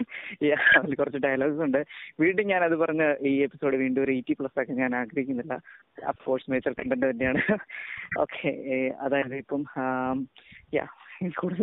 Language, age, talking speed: Malayalam, 20-39, 120 wpm